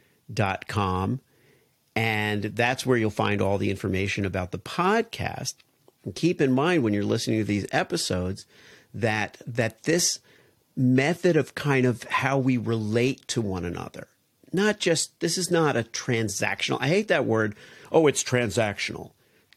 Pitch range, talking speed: 100-135 Hz, 155 wpm